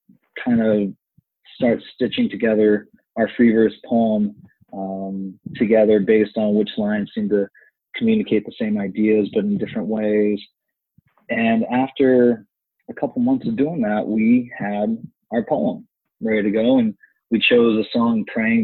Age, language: 20-39, English